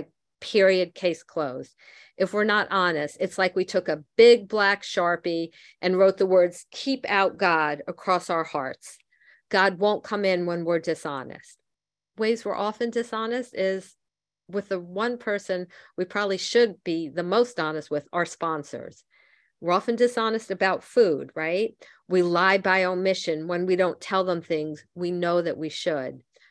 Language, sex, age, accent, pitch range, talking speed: English, female, 50-69, American, 165-205 Hz, 165 wpm